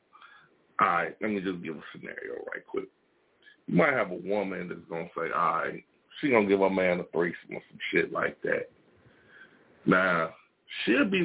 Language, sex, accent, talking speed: English, male, American, 185 wpm